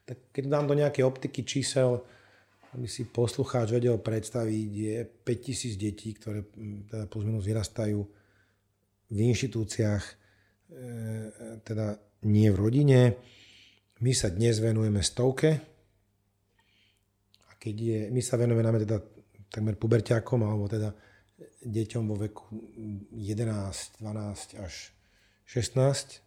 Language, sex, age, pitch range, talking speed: Slovak, male, 40-59, 105-120 Hz, 105 wpm